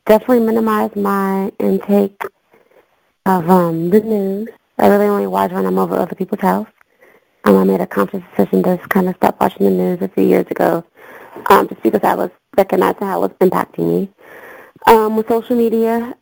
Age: 30-49